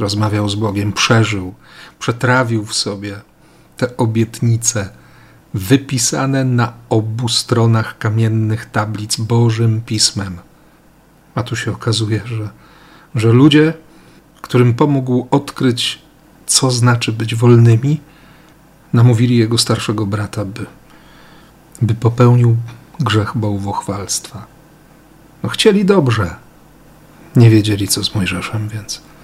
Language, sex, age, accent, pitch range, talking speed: Polish, male, 40-59, native, 110-150 Hz, 100 wpm